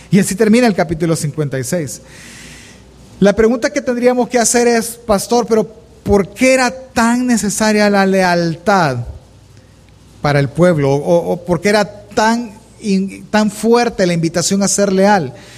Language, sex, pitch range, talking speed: Spanish, male, 170-225 Hz, 145 wpm